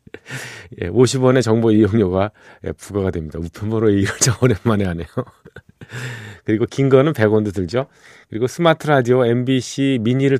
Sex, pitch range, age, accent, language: male, 95-130 Hz, 40-59, native, Korean